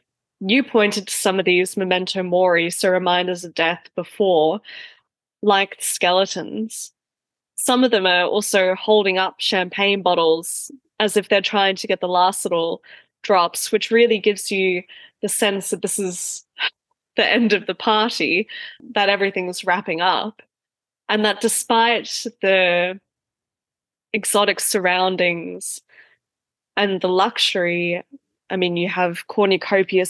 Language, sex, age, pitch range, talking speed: English, female, 10-29, 180-210 Hz, 130 wpm